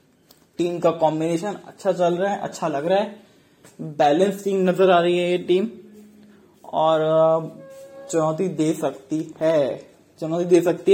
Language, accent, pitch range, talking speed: English, Indian, 155-190 Hz, 150 wpm